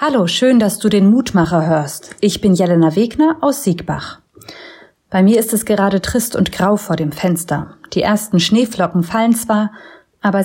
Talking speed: 170 wpm